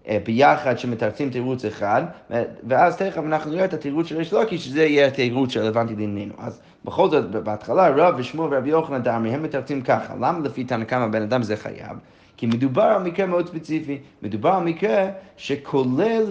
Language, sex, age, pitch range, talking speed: Hebrew, male, 30-49, 125-170 Hz, 165 wpm